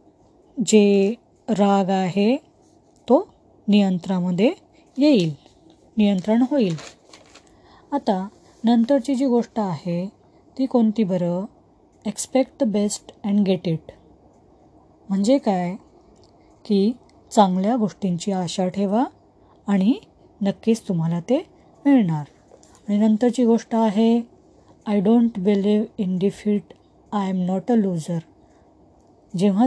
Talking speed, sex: 90 wpm, female